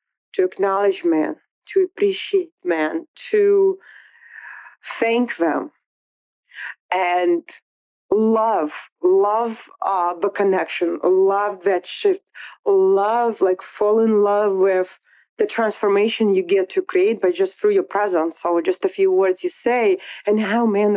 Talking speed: 130 wpm